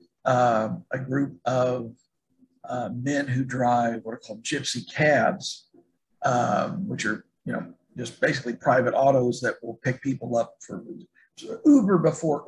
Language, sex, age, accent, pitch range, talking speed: English, male, 50-69, American, 125-165 Hz, 145 wpm